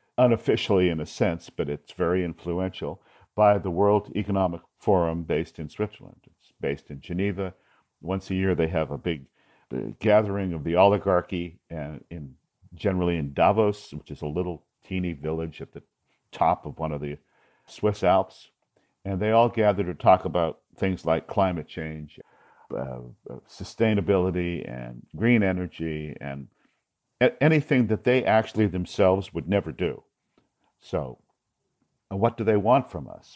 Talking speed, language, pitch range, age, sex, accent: 150 wpm, English, 80-105 Hz, 50-69, male, American